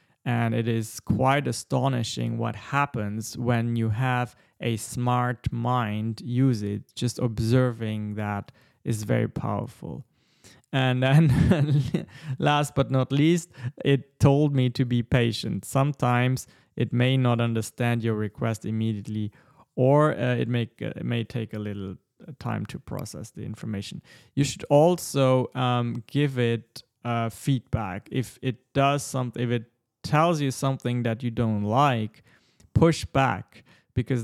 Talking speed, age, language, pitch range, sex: 135 wpm, 20-39, English, 115-135 Hz, male